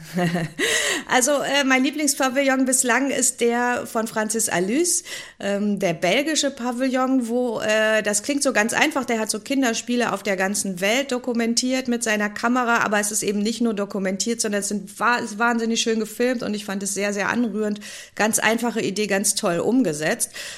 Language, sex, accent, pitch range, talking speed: German, female, German, 195-250 Hz, 170 wpm